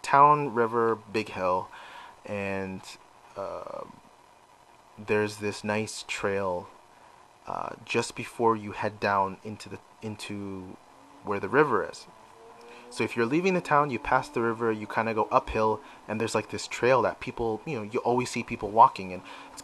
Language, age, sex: English, 30-49, male